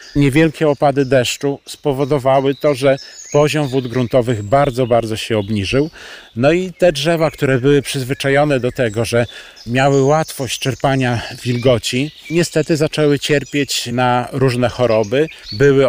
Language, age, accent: Polish, 40-59, native